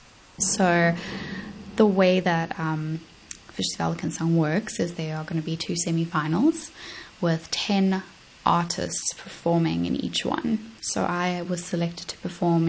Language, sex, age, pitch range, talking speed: English, female, 10-29, 165-190 Hz, 145 wpm